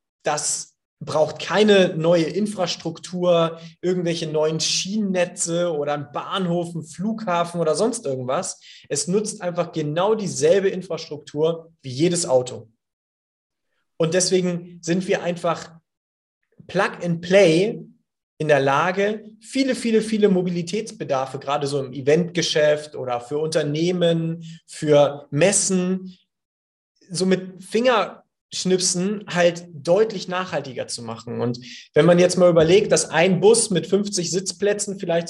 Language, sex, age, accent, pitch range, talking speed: German, male, 30-49, German, 155-195 Hz, 120 wpm